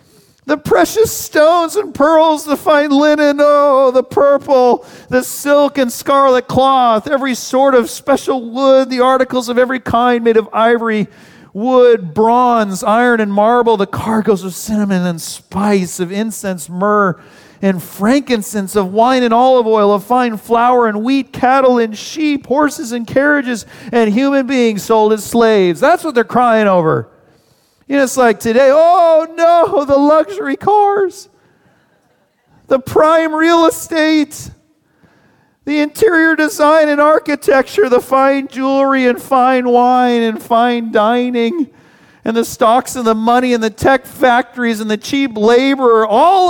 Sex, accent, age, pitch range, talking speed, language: male, American, 40-59, 215-280 Hz, 150 wpm, English